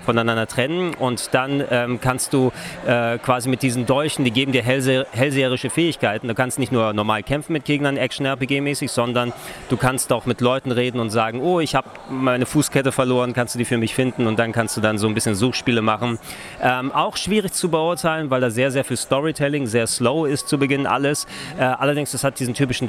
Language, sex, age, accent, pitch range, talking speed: German, male, 30-49, German, 115-140 Hz, 210 wpm